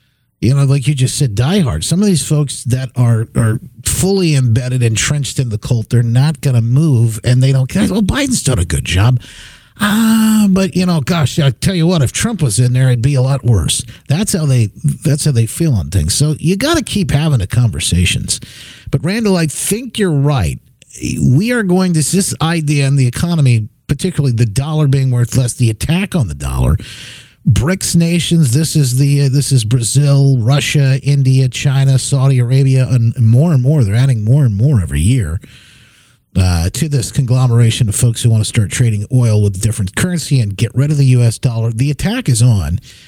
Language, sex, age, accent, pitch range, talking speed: English, male, 50-69, American, 115-150 Hz, 205 wpm